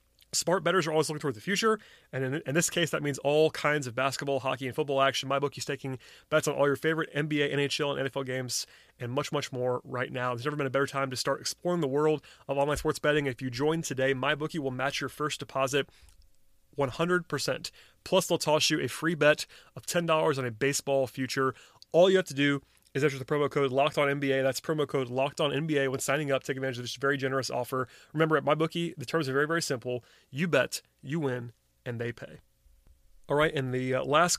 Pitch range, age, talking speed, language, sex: 130-150 Hz, 30-49, 225 wpm, English, male